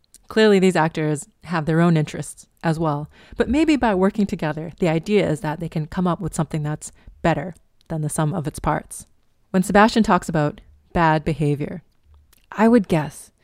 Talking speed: 185 wpm